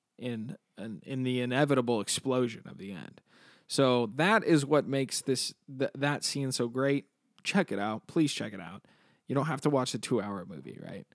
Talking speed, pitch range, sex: 195 wpm, 120-165 Hz, male